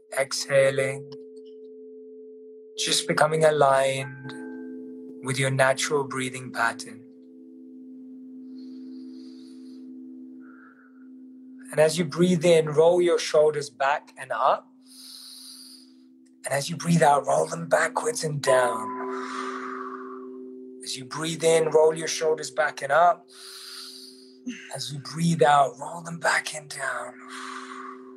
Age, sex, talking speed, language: 30-49, male, 105 wpm, English